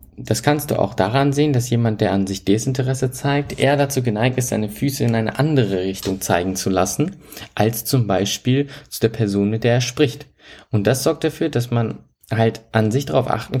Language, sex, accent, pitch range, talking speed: German, male, German, 100-135 Hz, 205 wpm